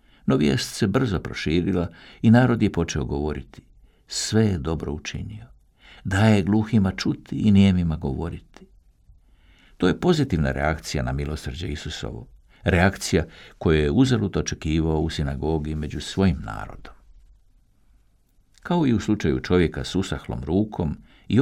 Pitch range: 75-100 Hz